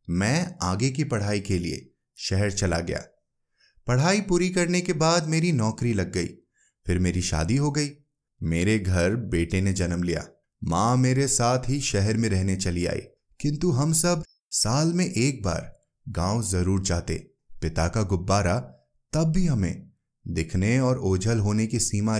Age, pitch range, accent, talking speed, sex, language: 20-39, 95-150 Hz, native, 160 wpm, male, Hindi